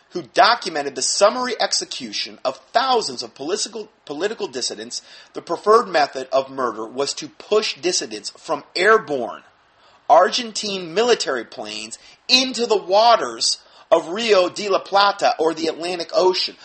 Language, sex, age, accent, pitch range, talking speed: English, male, 30-49, American, 160-270 Hz, 135 wpm